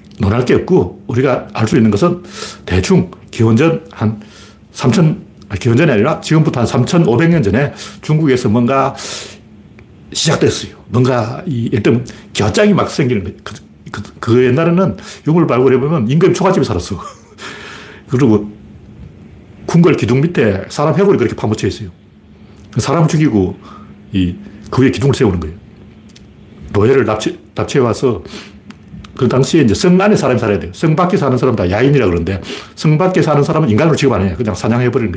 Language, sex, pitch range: Korean, male, 105-155 Hz